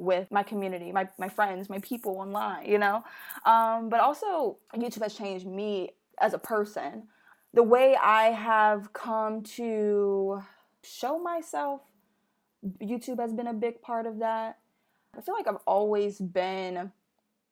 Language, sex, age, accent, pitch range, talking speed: English, female, 20-39, American, 195-240 Hz, 145 wpm